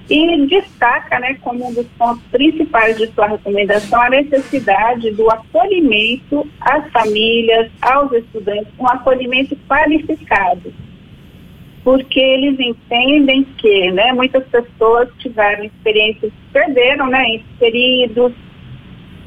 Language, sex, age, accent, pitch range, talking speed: Portuguese, female, 40-59, Brazilian, 215-265 Hz, 105 wpm